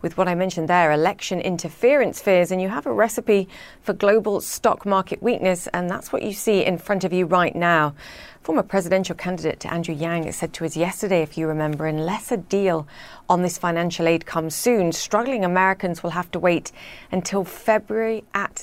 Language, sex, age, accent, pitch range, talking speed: English, female, 40-59, British, 165-195 Hz, 190 wpm